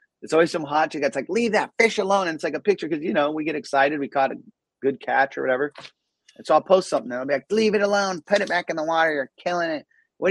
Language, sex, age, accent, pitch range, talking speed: English, male, 30-49, American, 155-205 Hz, 290 wpm